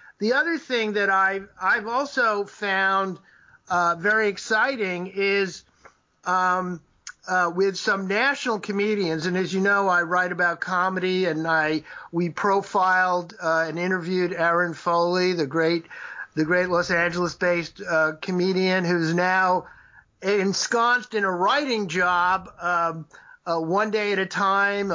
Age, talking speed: 50-69, 140 wpm